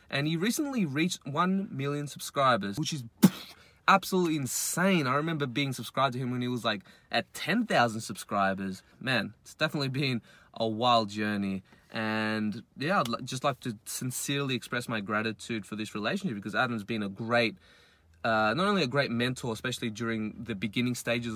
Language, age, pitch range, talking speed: English, 20-39, 115-150 Hz, 170 wpm